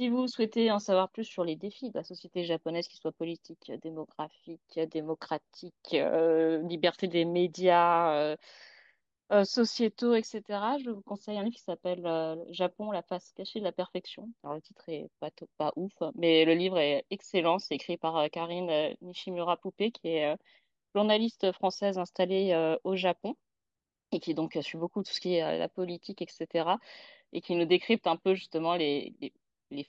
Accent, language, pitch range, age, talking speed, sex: French, French, 165-200 Hz, 30-49, 185 wpm, female